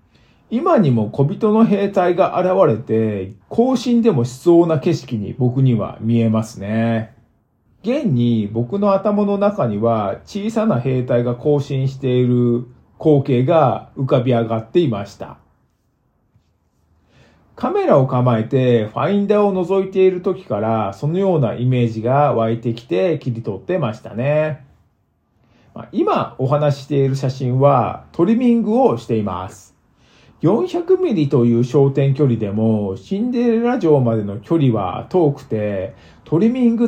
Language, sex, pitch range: Japanese, male, 115-190 Hz